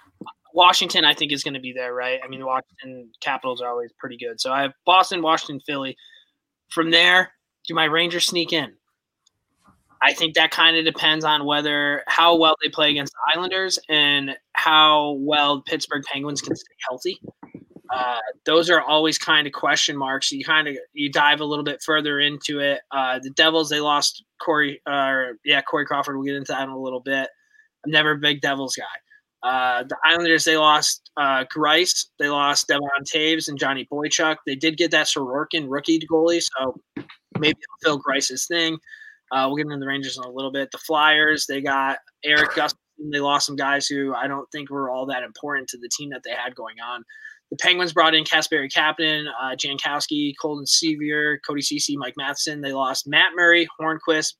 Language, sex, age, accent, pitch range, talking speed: English, male, 20-39, American, 140-165 Hz, 200 wpm